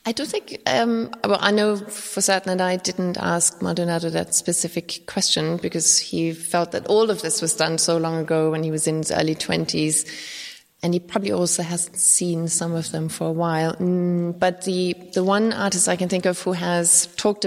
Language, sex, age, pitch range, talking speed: English, female, 20-39, 160-180 Hz, 205 wpm